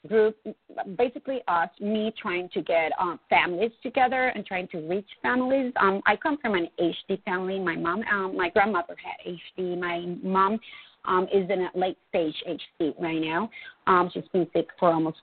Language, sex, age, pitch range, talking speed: English, female, 30-49, 175-215 Hz, 180 wpm